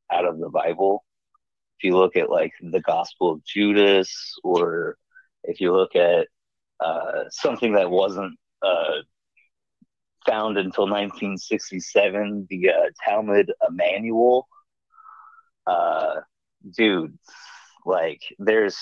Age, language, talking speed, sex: 30-49, English, 110 wpm, male